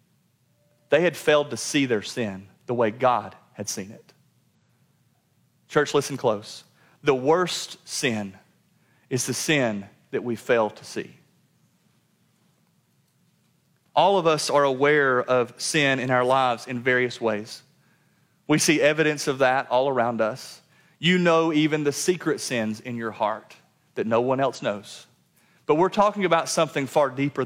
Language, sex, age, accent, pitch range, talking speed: English, male, 30-49, American, 125-170 Hz, 150 wpm